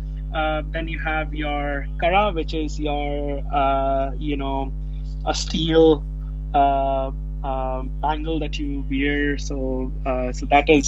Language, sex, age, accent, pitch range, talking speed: English, male, 20-39, Indian, 140-150 Hz, 130 wpm